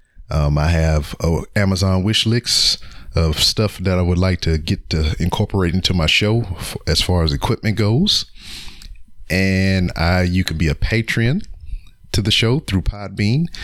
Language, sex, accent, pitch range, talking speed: English, male, American, 85-105 Hz, 165 wpm